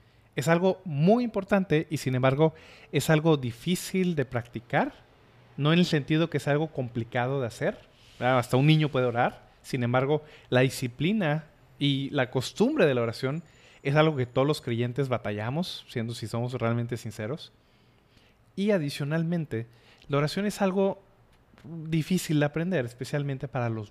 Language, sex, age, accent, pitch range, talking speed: Spanish, male, 30-49, Mexican, 120-165 Hz, 155 wpm